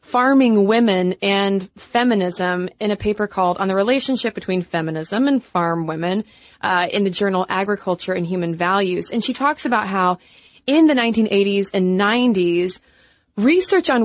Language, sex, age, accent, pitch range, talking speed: English, female, 30-49, American, 190-250 Hz, 155 wpm